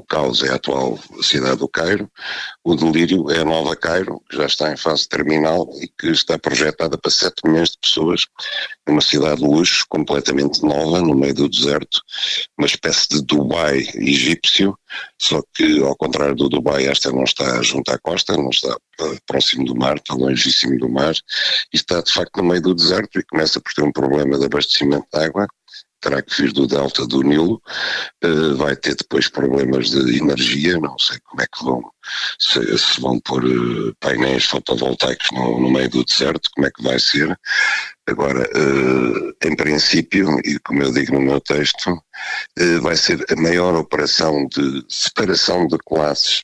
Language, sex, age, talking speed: Portuguese, male, 60-79, 170 wpm